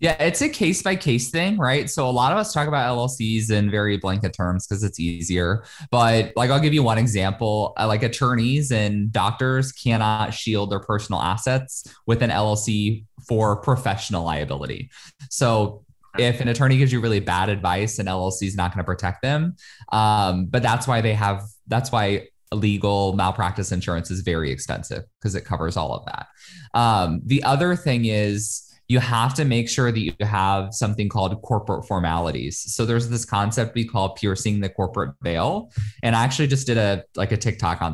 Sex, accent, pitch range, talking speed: male, American, 100-125 Hz, 185 wpm